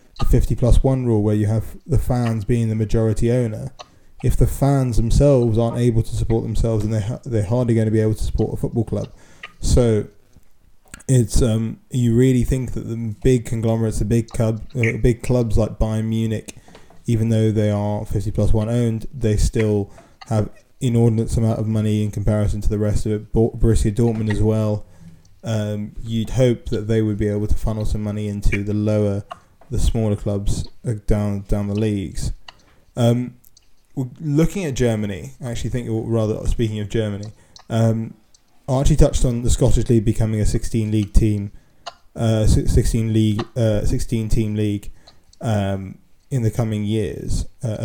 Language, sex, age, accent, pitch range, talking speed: English, male, 20-39, British, 105-115 Hz, 175 wpm